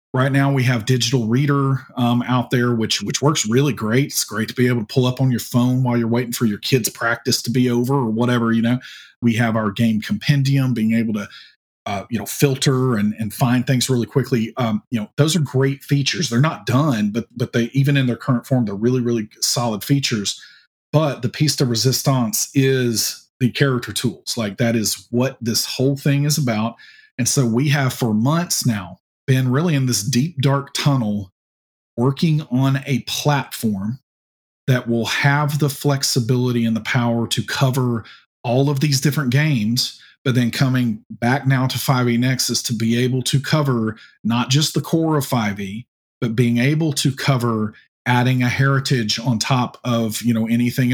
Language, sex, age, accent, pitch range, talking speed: English, male, 40-59, American, 115-135 Hz, 190 wpm